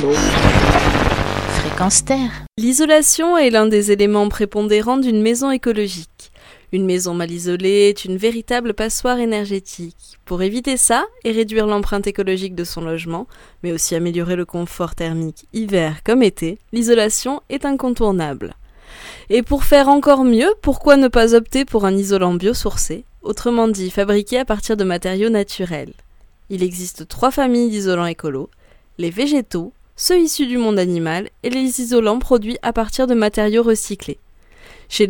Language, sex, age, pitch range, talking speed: French, female, 20-39, 185-250 Hz, 145 wpm